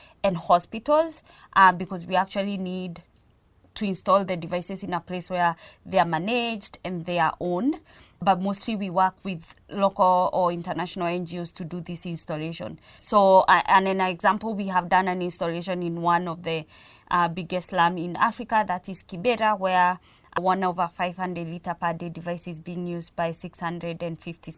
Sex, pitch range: female, 170-195 Hz